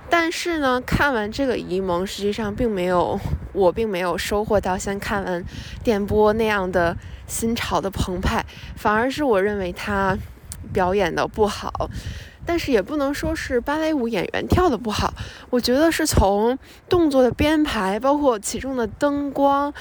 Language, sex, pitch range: Chinese, female, 195-265 Hz